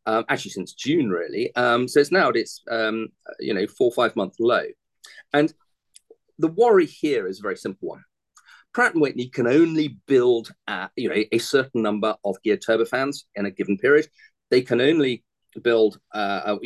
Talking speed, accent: 185 wpm, British